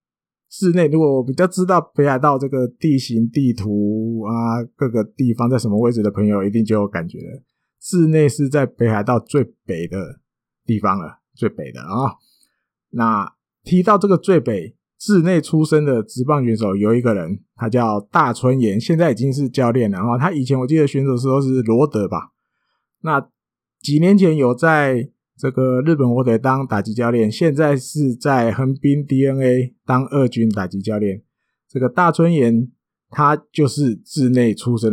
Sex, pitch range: male, 115-150 Hz